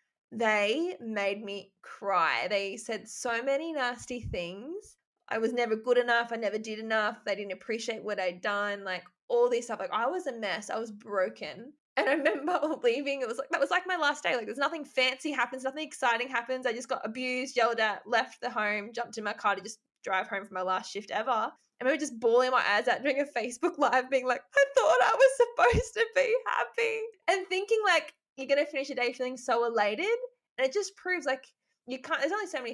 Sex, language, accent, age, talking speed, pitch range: female, English, Australian, 20-39, 225 wpm, 205-275 Hz